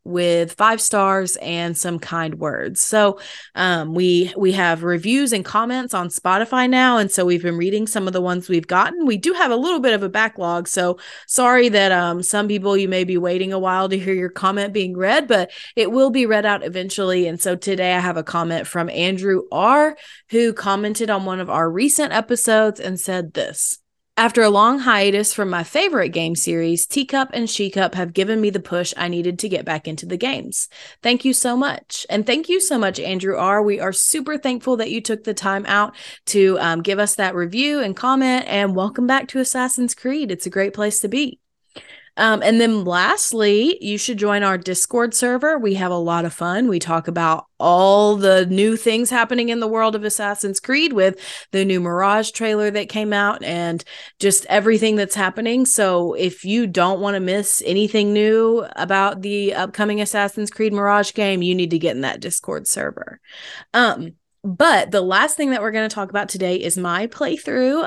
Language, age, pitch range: English, 20-39, 185-225 Hz